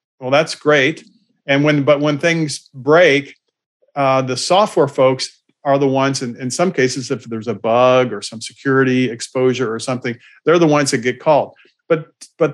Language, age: English, 40-59